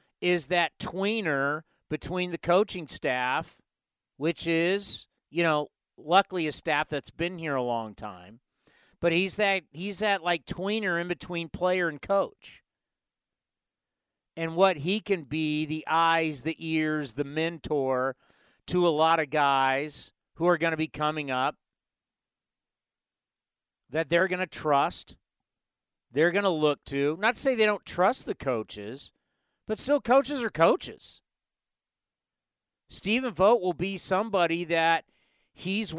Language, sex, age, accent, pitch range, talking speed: English, male, 50-69, American, 150-190 Hz, 140 wpm